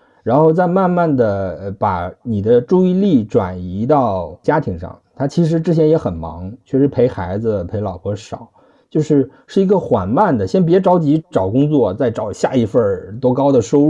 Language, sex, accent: Chinese, male, native